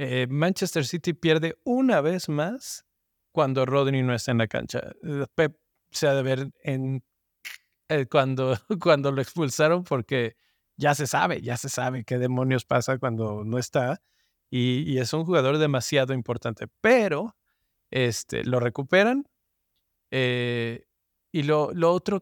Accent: Mexican